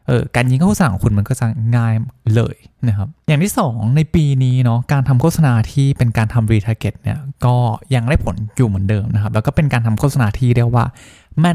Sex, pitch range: male, 110-140 Hz